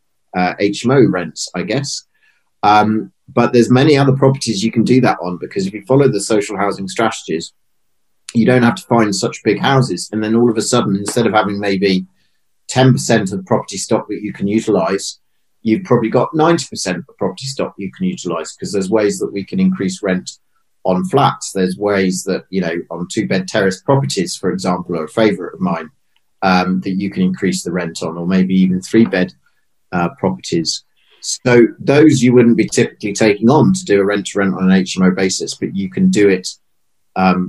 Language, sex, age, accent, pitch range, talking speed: English, male, 30-49, British, 95-115 Hz, 205 wpm